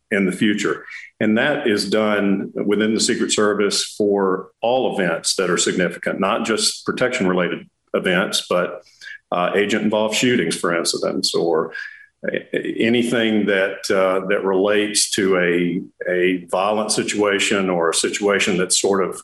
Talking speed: 140 wpm